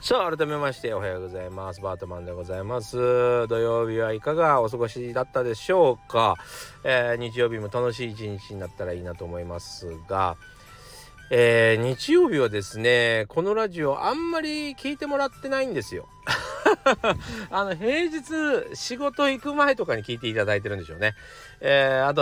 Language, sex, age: Japanese, male, 40-59